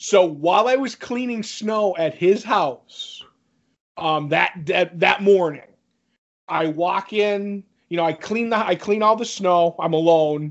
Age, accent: 30-49, American